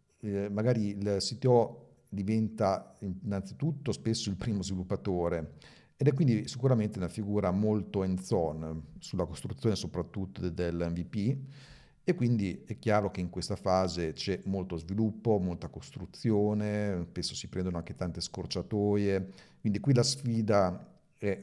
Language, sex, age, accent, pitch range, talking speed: Italian, male, 50-69, native, 90-110 Hz, 135 wpm